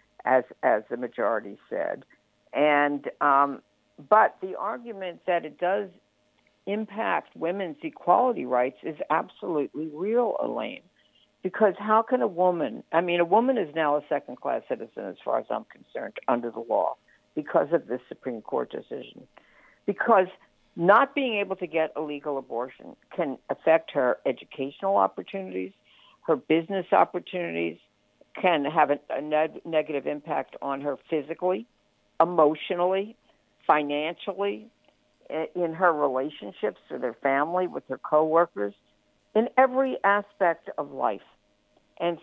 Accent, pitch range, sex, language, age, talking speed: American, 150-200 Hz, female, English, 60-79, 130 wpm